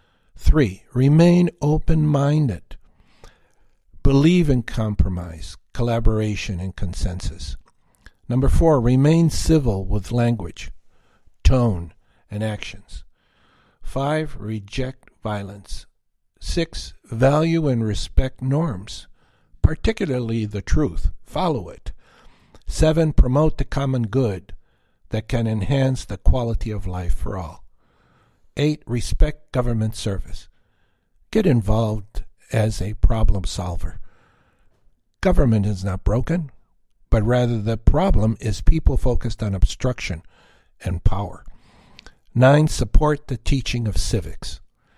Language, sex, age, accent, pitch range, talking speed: English, male, 60-79, American, 95-135 Hz, 100 wpm